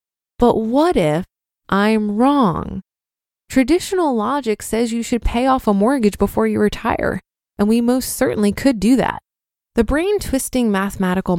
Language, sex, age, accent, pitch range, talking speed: English, female, 20-39, American, 190-255 Hz, 140 wpm